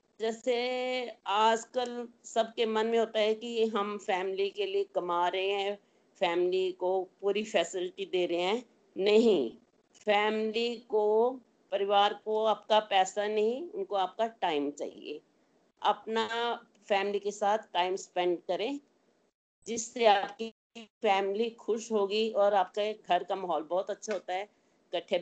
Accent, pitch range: native, 190-230 Hz